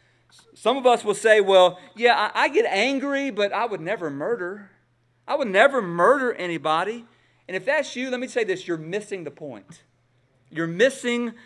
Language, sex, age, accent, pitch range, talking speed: English, male, 40-59, American, 150-225 Hz, 180 wpm